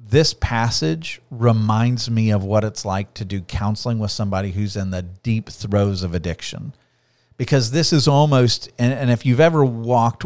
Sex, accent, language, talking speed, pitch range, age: male, American, English, 170 wpm, 110-135 Hz, 40-59